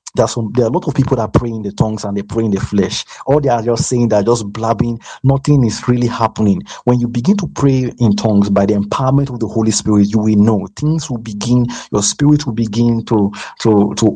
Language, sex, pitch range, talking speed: English, male, 105-120 Hz, 255 wpm